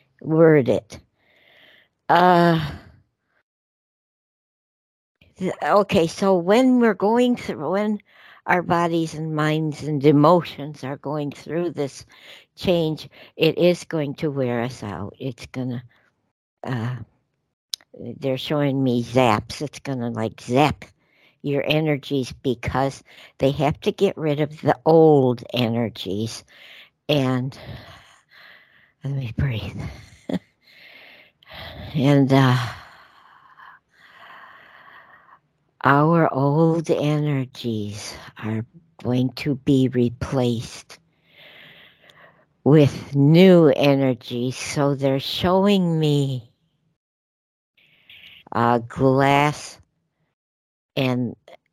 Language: English